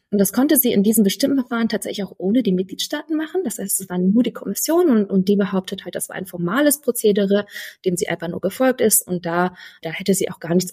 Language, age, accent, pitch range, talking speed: German, 20-39, German, 175-235 Hz, 250 wpm